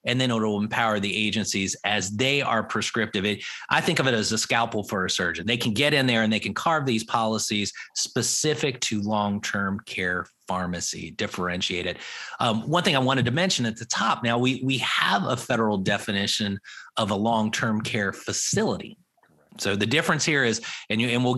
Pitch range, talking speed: 105-130 Hz, 195 wpm